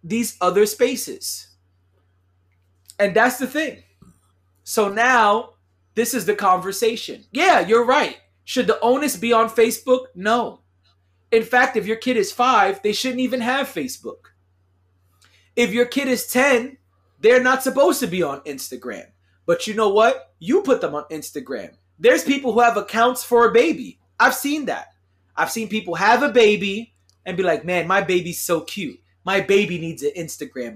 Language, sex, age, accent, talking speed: English, male, 30-49, American, 170 wpm